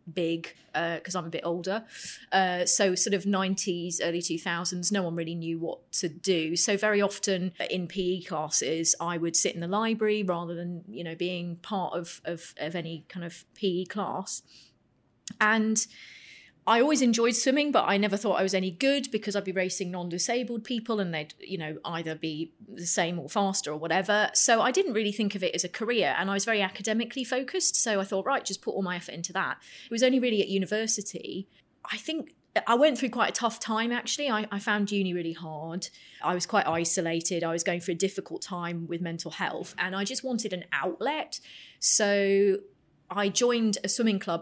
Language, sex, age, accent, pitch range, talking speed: English, female, 30-49, British, 175-215 Hz, 205 wpm